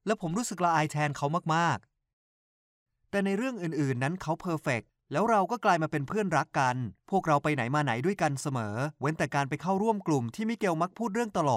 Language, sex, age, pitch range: Thai, male, 30-49, 140-195 Hz